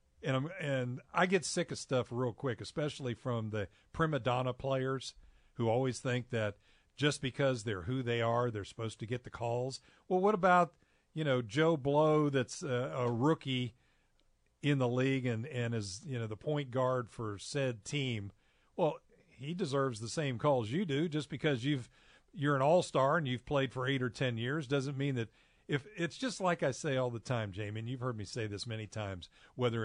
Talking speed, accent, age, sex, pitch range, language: 200 wpm, American, 50-69, male, 115-150 Hz, English